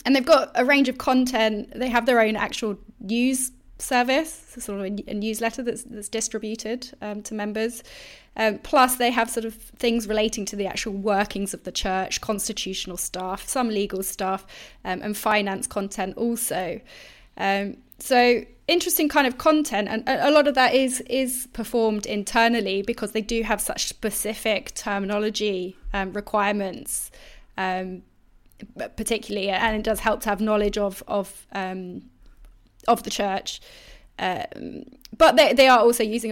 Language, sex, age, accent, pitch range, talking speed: English, female, 20-39, British, 200-245 Hz, 160 wpm